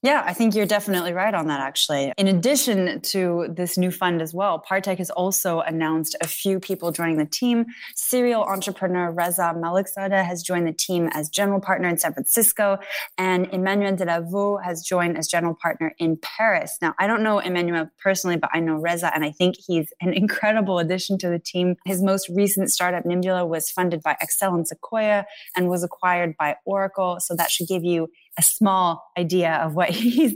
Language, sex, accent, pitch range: English, female, American, 170-200 Hz